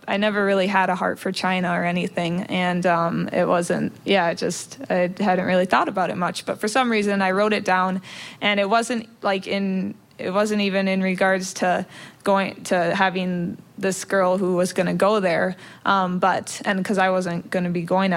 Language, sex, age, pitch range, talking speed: English, female, 20-39, 185-205 Hz, 210 wpm